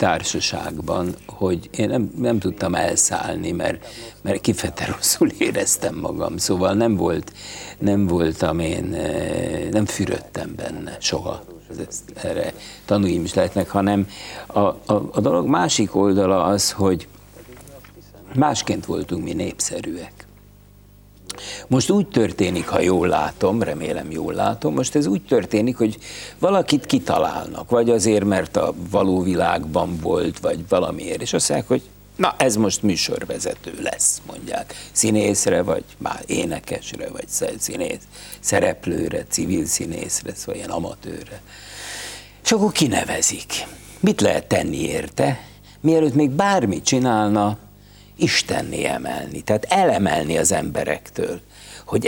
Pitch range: 100-130 Hz